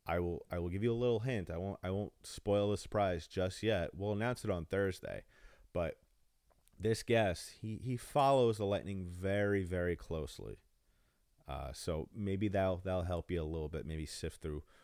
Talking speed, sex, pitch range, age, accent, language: 190 wpm, male, 80-100 Hz, 30-49, American, English